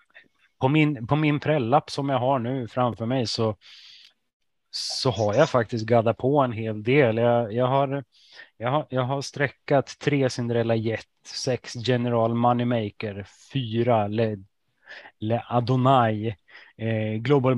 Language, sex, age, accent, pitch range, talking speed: Swedish, male, 30-49, native, 110-130 Hz, 140 wpm